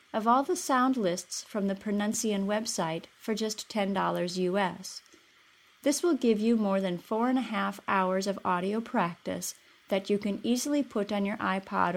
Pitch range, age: 185-230 Hz, 30-49